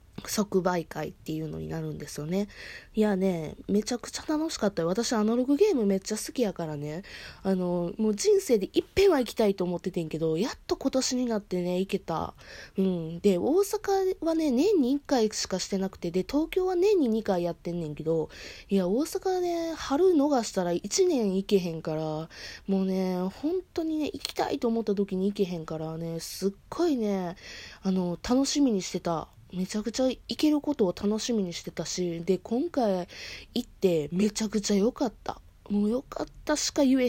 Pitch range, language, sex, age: 180-275 Hz, Japanese, female, 20-39